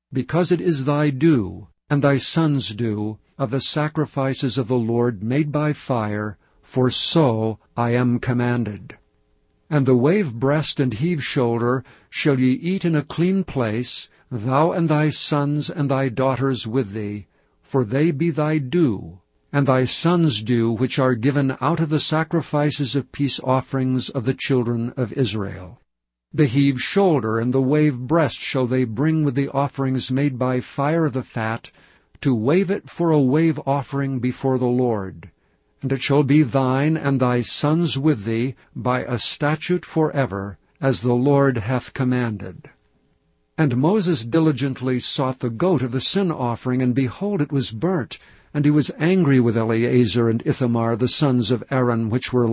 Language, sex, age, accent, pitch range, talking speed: English, male, 60-79, American, 120-150 Hz, 165 wpm